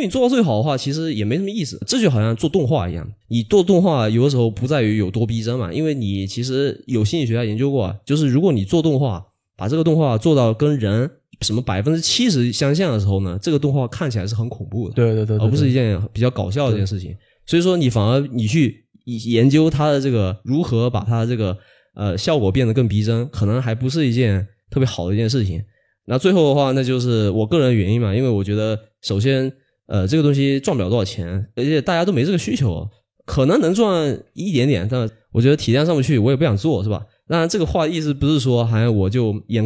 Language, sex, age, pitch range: Chinese, male, 20-39, 110-145 Hz